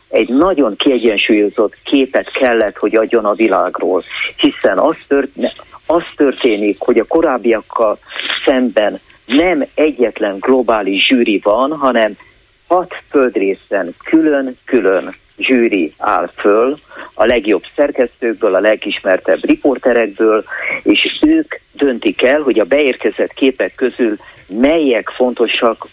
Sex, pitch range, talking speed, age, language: male, 115-175 Hz, 105 wpm, 50-69, Hungarian